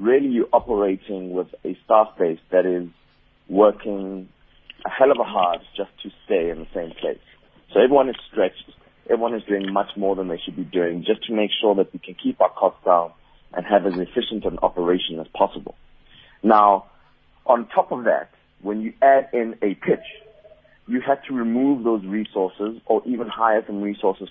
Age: 30-49